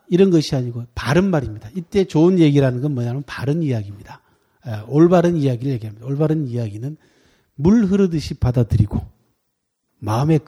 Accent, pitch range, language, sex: native, 115-155 Hz, Korean, male